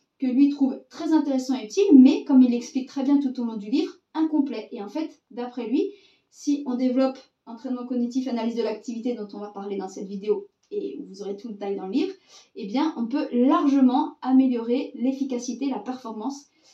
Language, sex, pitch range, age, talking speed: French, female, 235-290 Hz, 30-49, 205 wpm